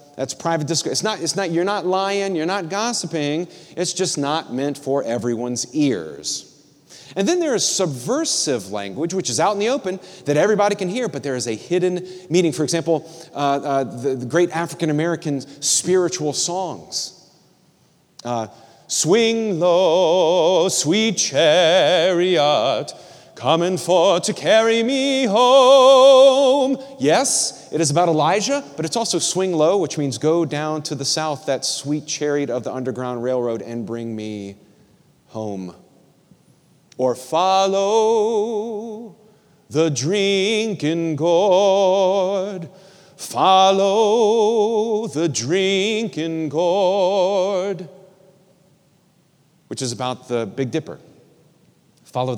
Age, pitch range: 40-59, 140-195 Hz